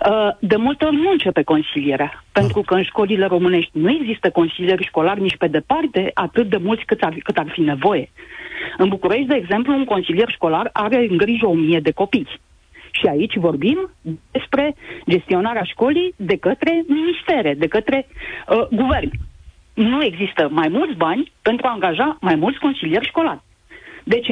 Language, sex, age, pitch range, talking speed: Romanian, female, 40-59, 180-290 Hz, 165 wpm